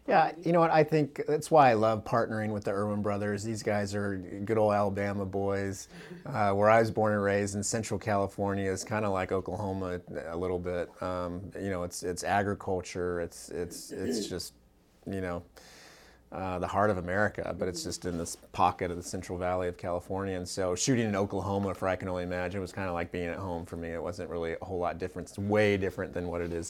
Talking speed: 230 wpm